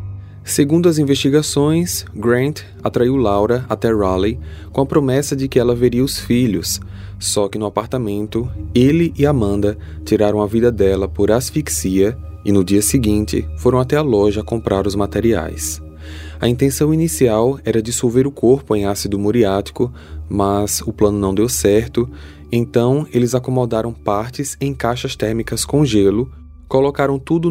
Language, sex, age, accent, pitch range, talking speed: Portuguese, male, 20-39, Brazilian, 100-130 Hz, 150 wpm